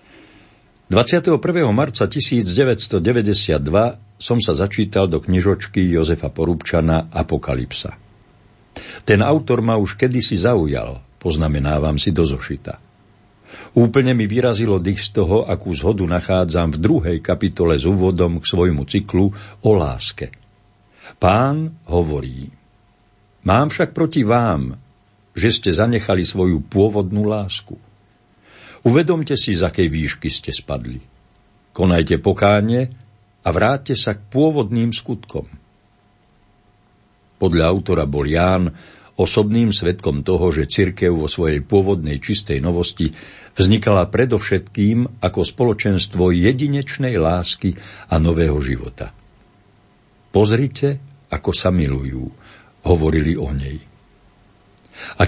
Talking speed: 105 wpm